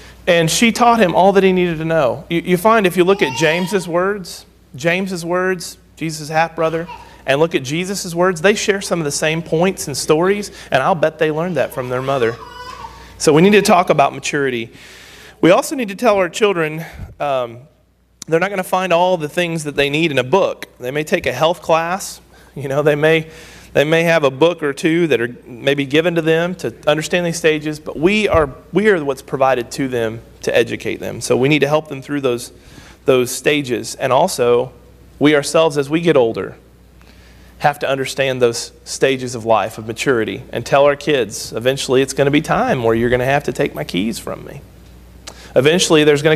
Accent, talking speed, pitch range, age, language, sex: American, 215 wpm, 135-180 Hz, 40-59, English, male